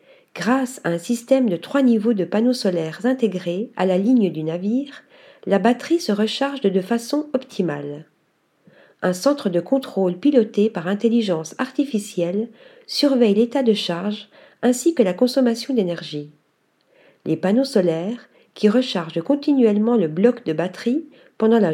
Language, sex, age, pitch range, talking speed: French, female, 50-69, 195-260 Hz, 145 wpm